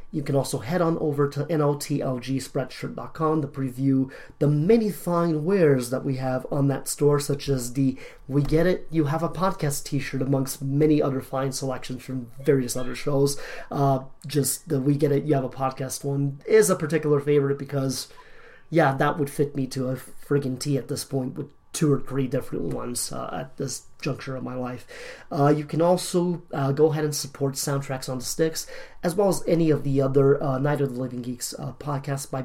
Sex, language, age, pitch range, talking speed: male, English, 30-49, 135-150 Hz, 205 wpm